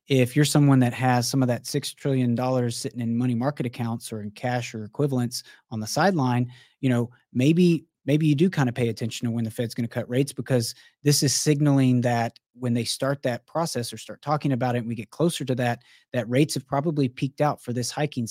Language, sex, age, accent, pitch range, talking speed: English, male, 30-49, American, 115-130 Hz, 235 wpm